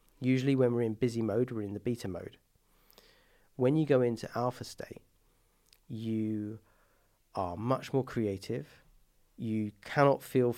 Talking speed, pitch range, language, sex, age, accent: 140 wpm, 105-125 Hz, English, male, 40-59, British